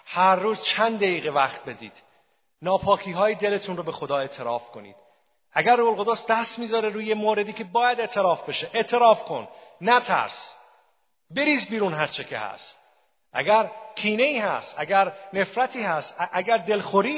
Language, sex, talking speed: Persian, male, 145 wpm